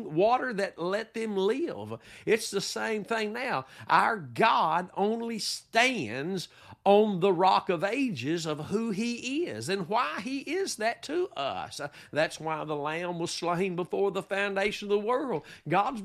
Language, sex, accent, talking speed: English, male, American, 160 wpm